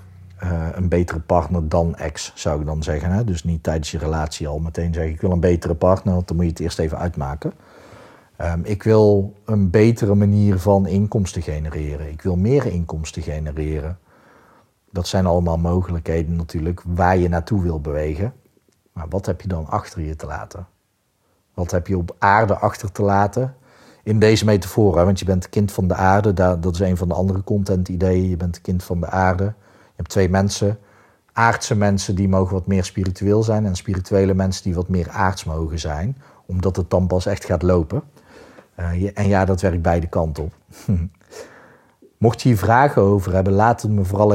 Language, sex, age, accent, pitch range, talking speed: Dutch, male, 40-59, Dutch, 85-105 Hz, 195 wpm